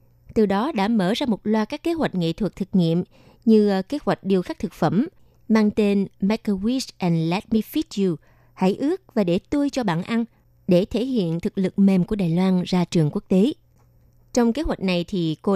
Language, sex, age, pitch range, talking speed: Vietnamese, female, 20-39, 170-225 Hz, 225 wpm